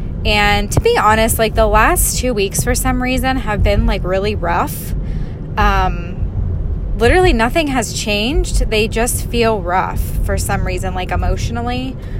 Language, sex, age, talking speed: English, female, 10-29, 150 wpm